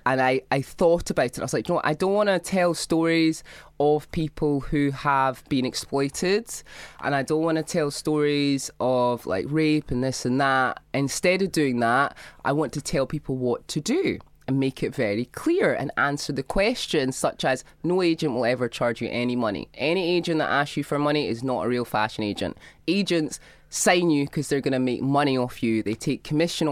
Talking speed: 215 wpm